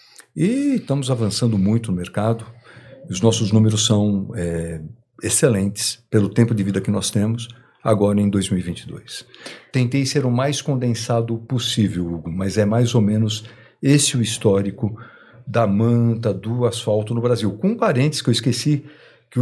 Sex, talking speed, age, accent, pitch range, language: male, 150 wpm, 50-69, Brazilian, 110-135 Hz, Portuguese